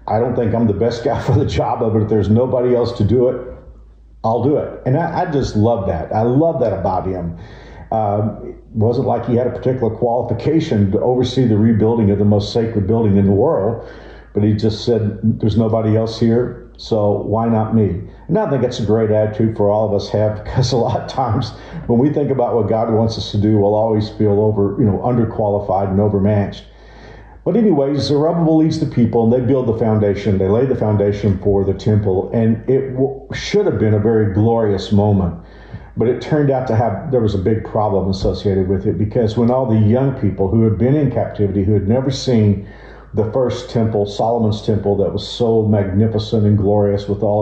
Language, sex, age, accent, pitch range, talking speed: English, male, 50-69, American, 105-120 Hz, 215 wpm